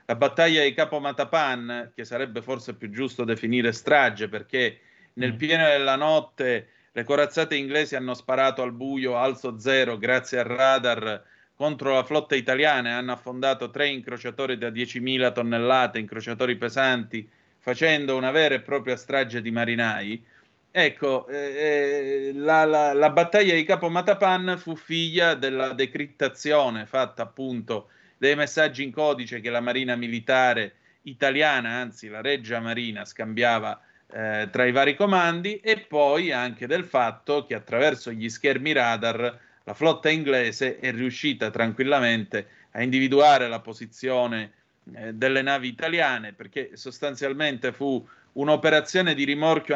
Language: Italian